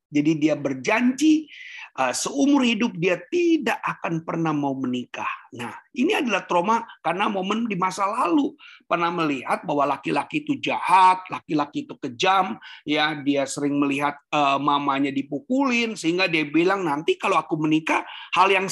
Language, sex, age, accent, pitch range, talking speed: Indonesian, male, 40-59, native, 145-220 Hz, 145 wpm